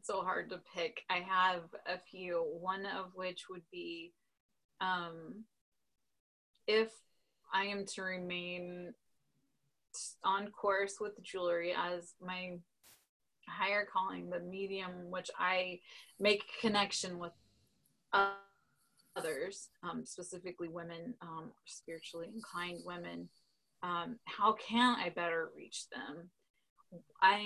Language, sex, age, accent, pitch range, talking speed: English, female, 20-39, American, 175-210 Hz, 110 wpm